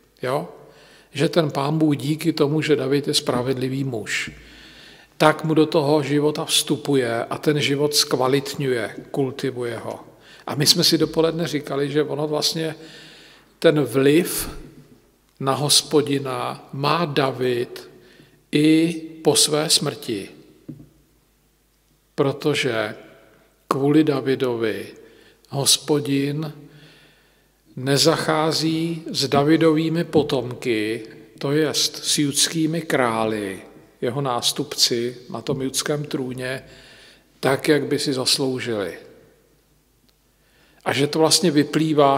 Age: 50-69